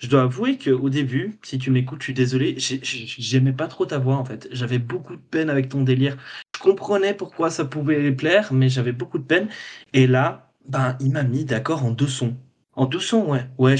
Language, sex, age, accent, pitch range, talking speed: French, male, 20-39, French, 130-150 Hz, 230 wpm